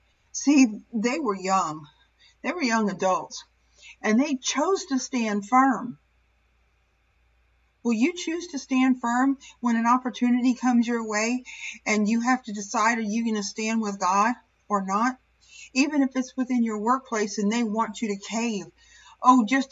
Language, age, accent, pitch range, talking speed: English, 50-69, American, 210-255 Hz, 165 wpm